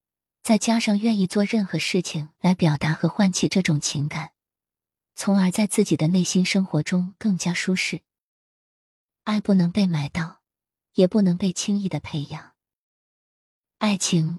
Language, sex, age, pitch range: Chinese, female, 20-39, 160-200 Hz